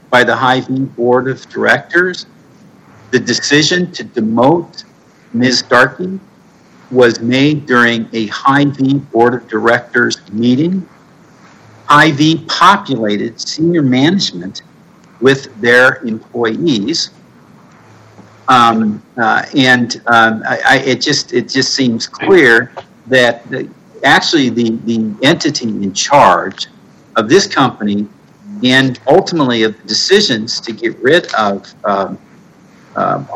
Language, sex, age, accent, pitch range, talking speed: English, male, 50-69, American, 115-135 Hz, 105 wpm